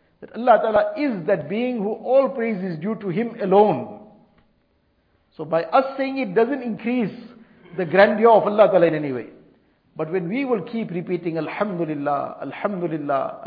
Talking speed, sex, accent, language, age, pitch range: 165 wpm, male, Indian, English, 50-69, 170-215 Hz